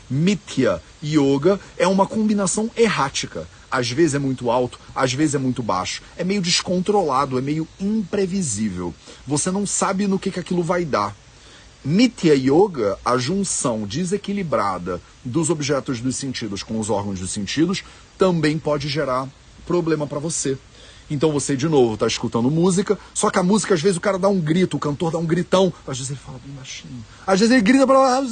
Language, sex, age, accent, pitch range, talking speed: Portuguese, male, 40-59, Brazilian, 130-190 Hz, 180 wpm